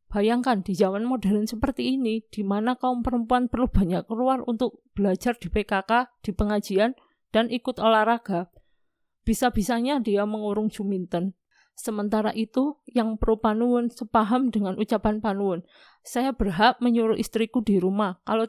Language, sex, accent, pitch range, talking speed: Indonesian, female, native, 205-250 Hz, 135 wpm